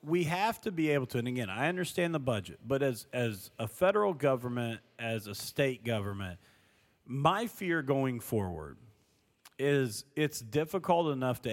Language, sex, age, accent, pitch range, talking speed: English, male, 40-59, American, 110-135 Hz, 160 wpm